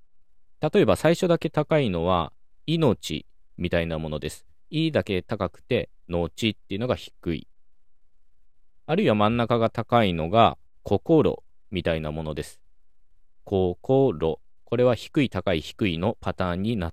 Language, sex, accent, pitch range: Japanese, male, native, 85-130 Hz